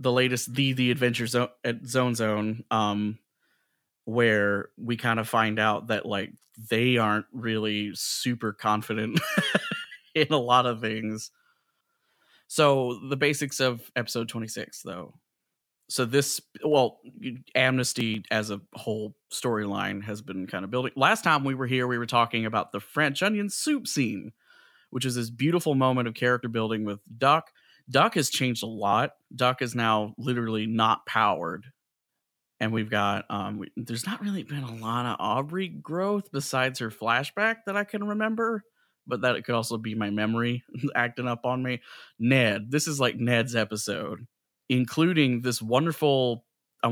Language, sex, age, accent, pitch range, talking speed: English, male, 30-49, American, 110-135 Hz, 160 wpm